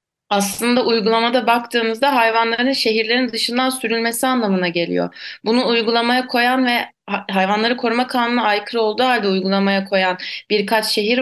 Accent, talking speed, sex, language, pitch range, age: native, 125 wpm, female, Turkish, 200-235 Hz, 30-49